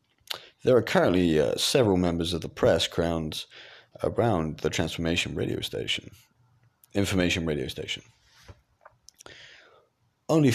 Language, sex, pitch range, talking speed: English, male, 85-105 Hz, 110 wpm